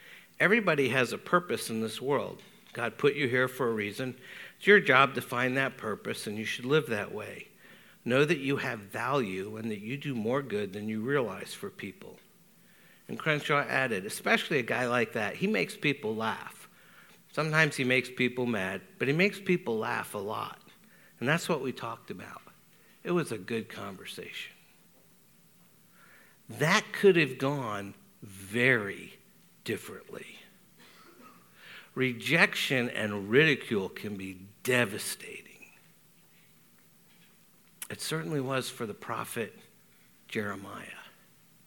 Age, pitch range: 60-79, 115-150 Hz